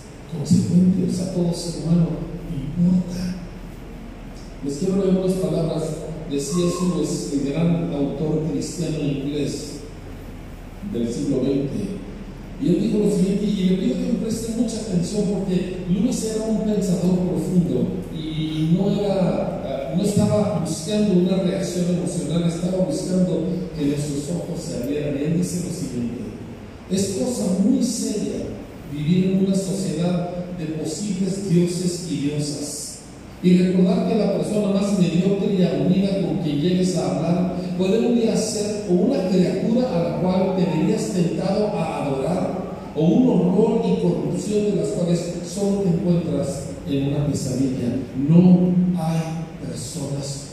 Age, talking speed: 40-59, 140 wpm